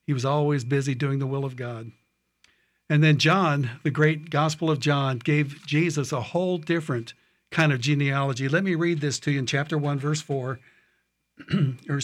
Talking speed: 185 wpm